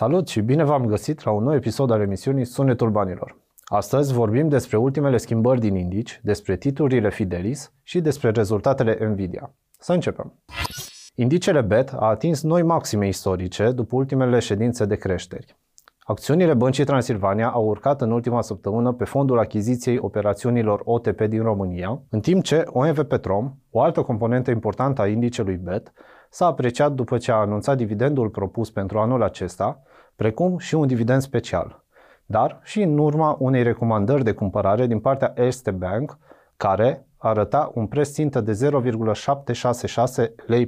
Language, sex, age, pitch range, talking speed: Romanian, male, 30-49, 105-135 Hz, 150 wpm